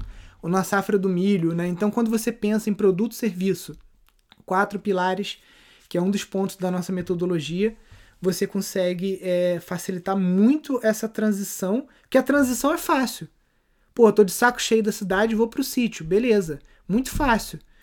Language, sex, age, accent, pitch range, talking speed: Portuguese, male, 20-39, Brazilian, 180-225 Hz, 160 wpm